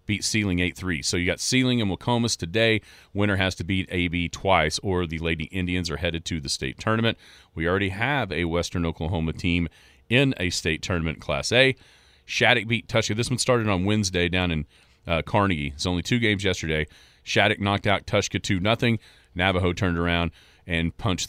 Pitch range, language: 80-100 Hz, English